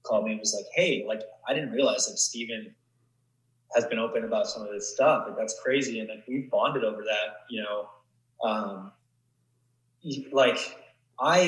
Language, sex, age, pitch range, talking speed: English, male, 20-39, 110-125 Hz, 180 wpm